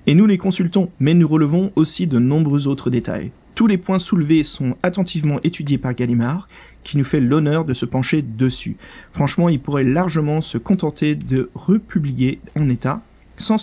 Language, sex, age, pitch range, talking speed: French, male, 40-59, 130-175 Hz, 175 wpm